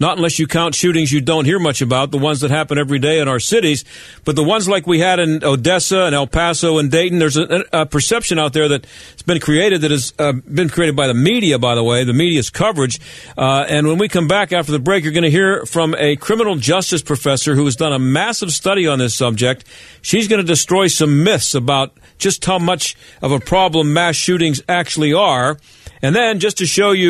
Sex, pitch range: male, 140-175 Hz